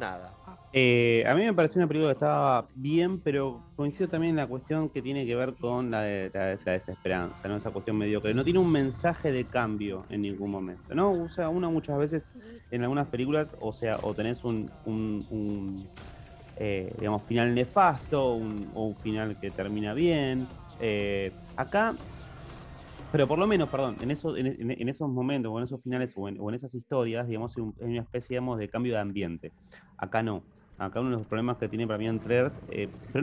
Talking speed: 205 wpm